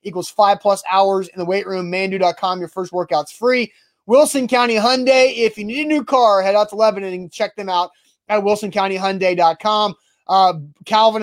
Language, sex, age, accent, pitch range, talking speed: English, male, 30-49, American, 190-225 Hz, 175 wpm